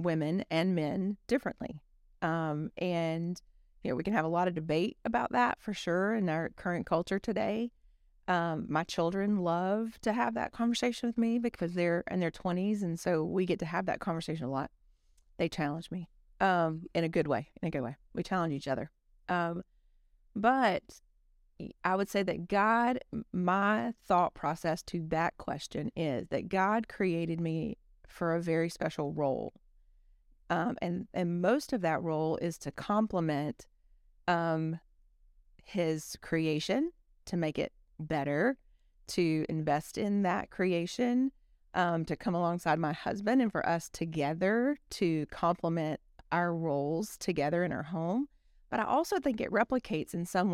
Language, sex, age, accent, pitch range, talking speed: English, female, 30-49, American, 155-200 Hz, 160 wpm